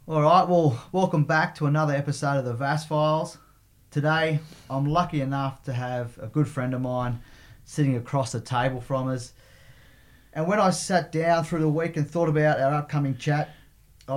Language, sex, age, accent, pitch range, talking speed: English, male, 30-49, Australian, 125-150 Hz, 185 wpm